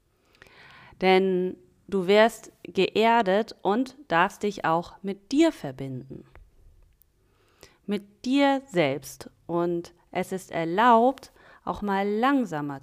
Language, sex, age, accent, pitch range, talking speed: German, female, 30-49, German, 165-200 Hz, 100 wpm